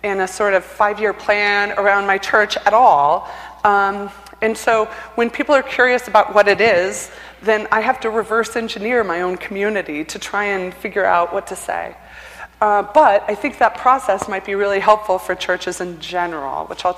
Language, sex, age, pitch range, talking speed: English, female, 30-49, 185-230 Hz, 195 wpm